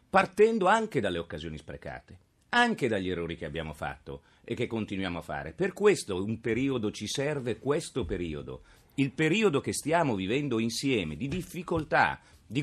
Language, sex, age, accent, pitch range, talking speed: Italian, male, 40-59, native, 105-165 Hz, 155 wpm